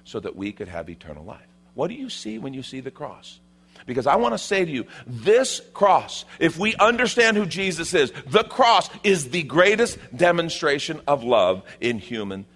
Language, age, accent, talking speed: English, 50-69, American, 195 wpm